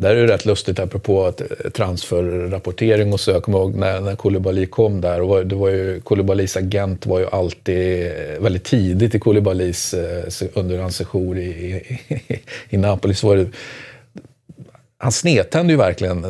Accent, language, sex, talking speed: native, Swedish, male, 160 wpm